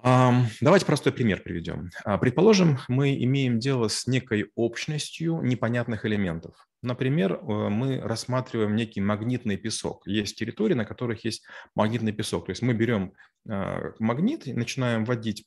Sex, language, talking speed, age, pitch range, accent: male, Russian, 130 wpm, 30-49, 105-135 Hz, native